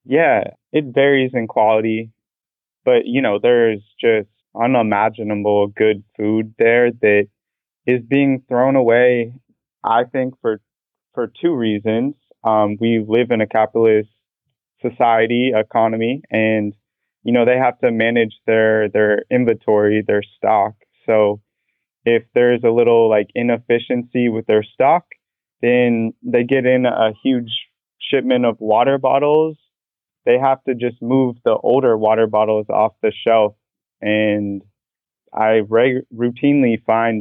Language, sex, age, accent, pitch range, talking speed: English, male, 20-39, American, 110-125 Hz, 130 wpm